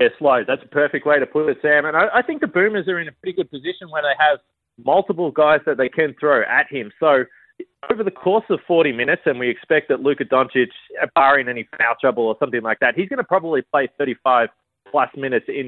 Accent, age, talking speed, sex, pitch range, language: Australian, 30-49, 235 wpm, male, 140-180 Hz, English